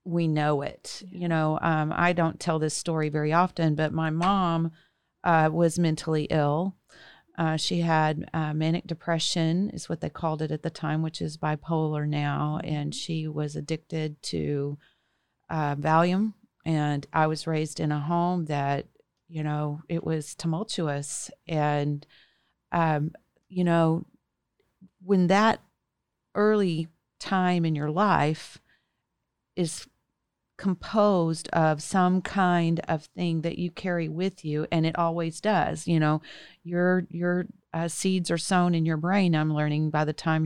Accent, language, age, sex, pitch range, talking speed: American, English, 40-59, female, 155-180 Hz, 150 wpm